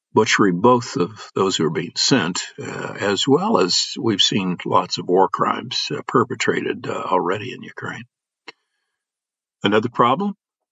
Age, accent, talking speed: 50-69, American, 145 wpm